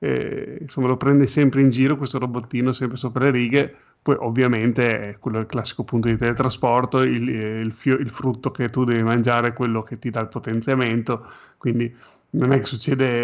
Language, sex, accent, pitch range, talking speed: Italian, male, native, 120-145 Hz, 200 wpm